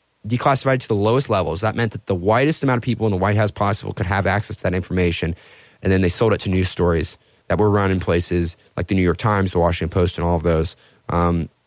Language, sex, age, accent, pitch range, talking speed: English, male, 30-49, American, 95-130 Hz, 255 wpm